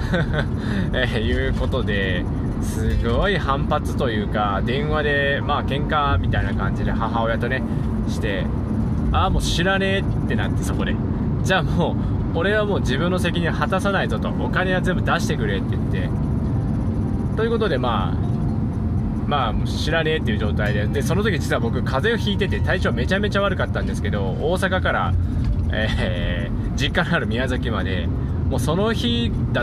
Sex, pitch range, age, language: male, 105-120 Hz, 20-39, Japanese